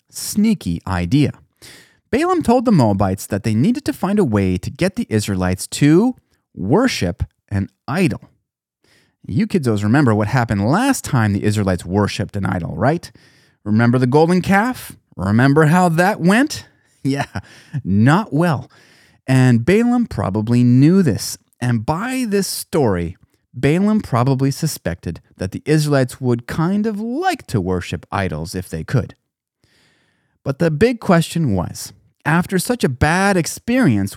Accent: American